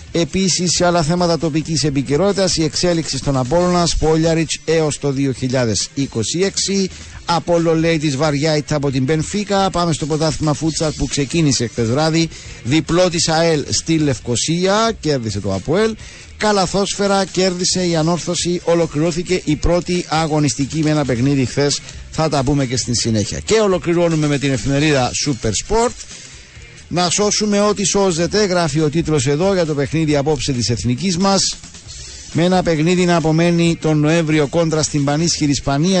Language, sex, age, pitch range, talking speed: Greek, male, 50-69, 145-175 Hz, 145 wpm